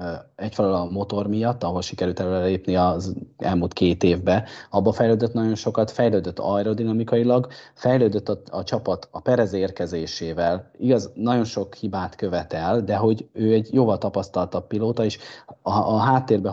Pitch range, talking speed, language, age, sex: 95-125 Hz, 145 wpm, Hungarian, 30-49, male